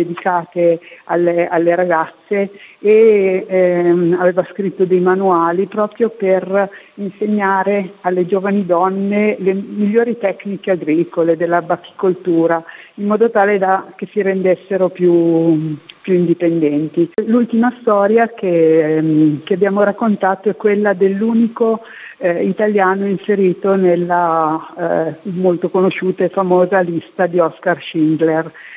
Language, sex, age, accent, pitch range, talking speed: Italian, female, 50-69, native, 170-200 Hz, 110 wpm